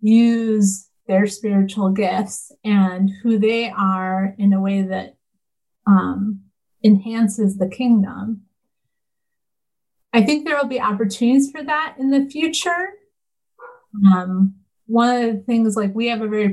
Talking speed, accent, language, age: 135 wpm, American, English, 30-49